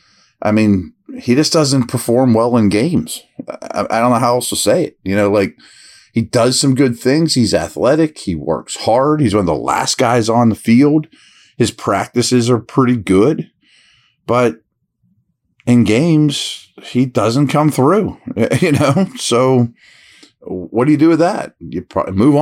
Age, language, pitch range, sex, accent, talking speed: 40-59, English, 105-140 Hz, male, American, 170 wpm